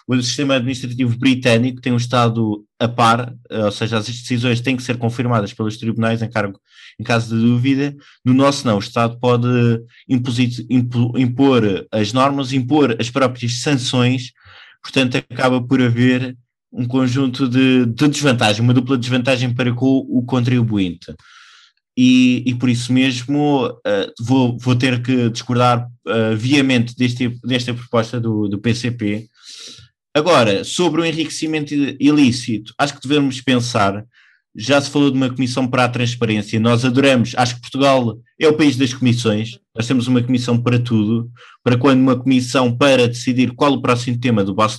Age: 20-39